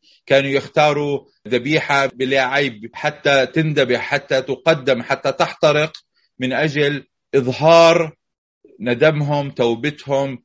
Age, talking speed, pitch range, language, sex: 30-49, 90 wpm, 125-150 Hz, Arabic, male